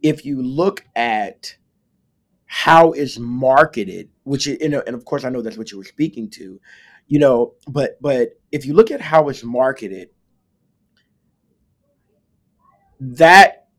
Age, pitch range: 30-49, 120-160 Hz